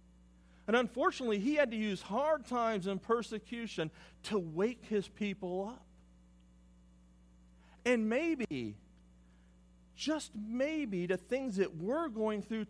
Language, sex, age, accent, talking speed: English, male, 50-69, American, 120 wpm